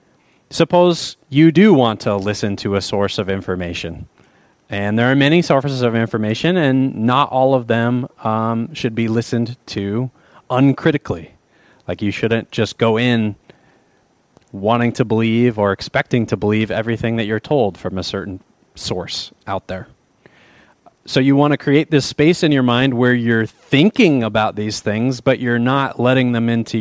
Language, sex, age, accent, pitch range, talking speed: English, male, 30-49, American, 105-135 Hz, 165 wpm